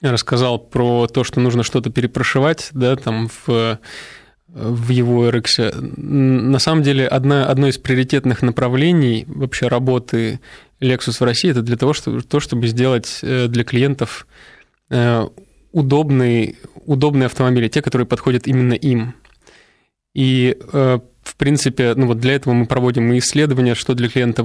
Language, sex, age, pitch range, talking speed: Russian, male, 20-39, 120-135 Hz, 135 wpm